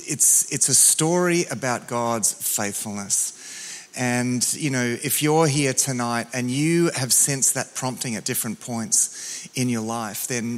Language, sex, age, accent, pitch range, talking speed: English, male, 30-49, Australian, 120-150 Hz, 155 wpm